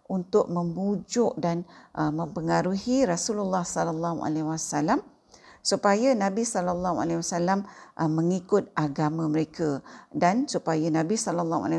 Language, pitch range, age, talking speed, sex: Malay, 165-240 Hz, 50-69, 105 wpm, female